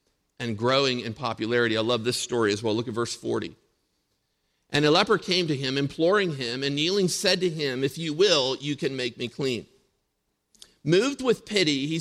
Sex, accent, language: male, American, English